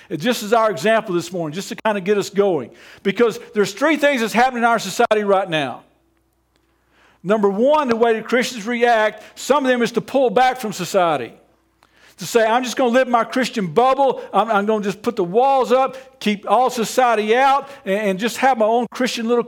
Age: 50-69